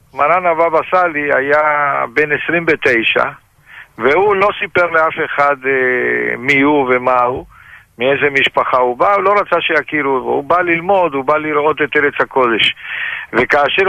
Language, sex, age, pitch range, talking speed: Hebrew, male, 60-79, 135-175 Hz, 140 wpm